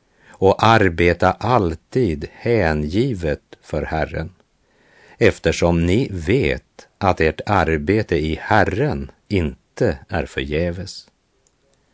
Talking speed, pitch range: 85 wpm, 80-110 Hz